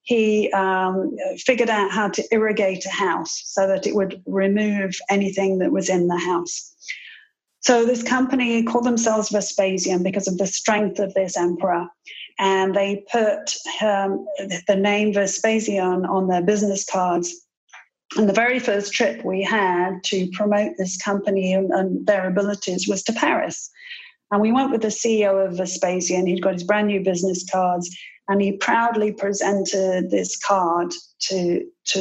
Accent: British